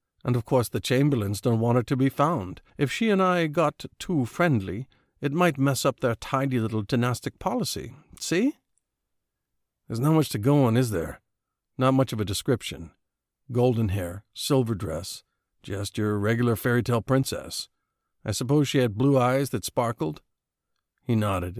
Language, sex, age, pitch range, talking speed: English, male, 50-69, 100-135 Hz, 165 wpm